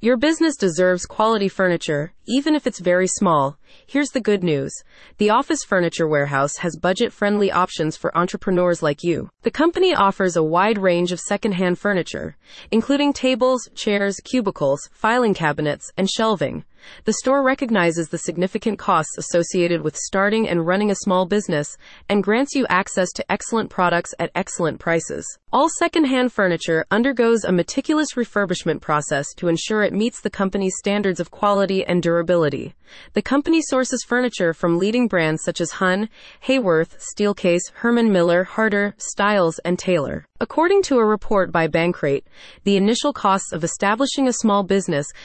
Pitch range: 170-230 Hz